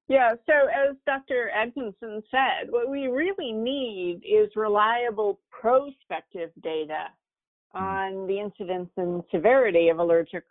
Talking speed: 120 wpm